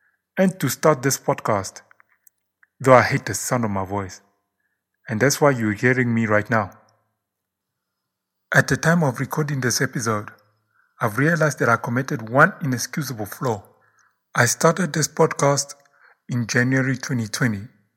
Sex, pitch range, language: male, 115-140 Hz, English